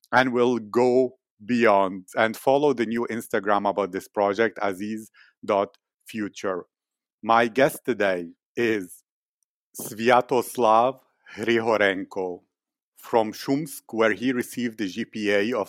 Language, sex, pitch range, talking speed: English, male, 105-120 Hz, 105 wpm